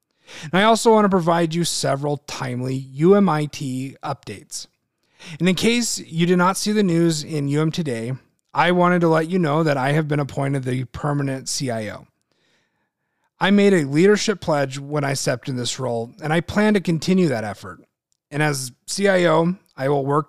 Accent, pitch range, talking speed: American, 135-175 Hz, 180 wpm